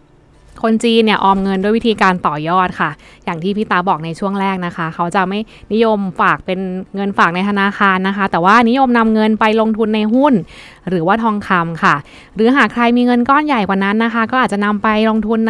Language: Thai